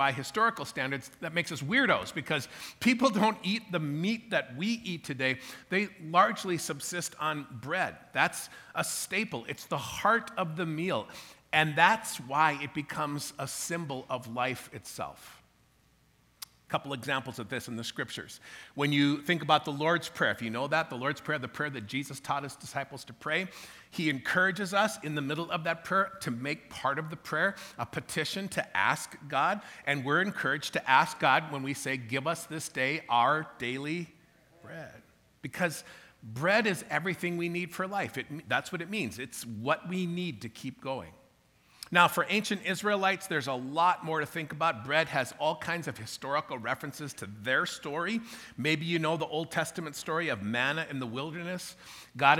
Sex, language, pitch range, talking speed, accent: male, English, 140-175 Hz, 185 wpm, American